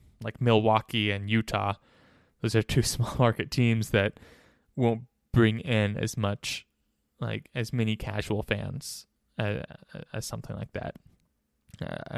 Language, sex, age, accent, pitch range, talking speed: English, male, 20-39, American, 105-125 Hz, 135 wpm